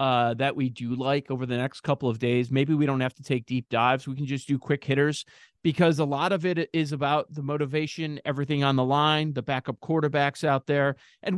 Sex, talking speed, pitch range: male, 230 wpm, 145-195 Hz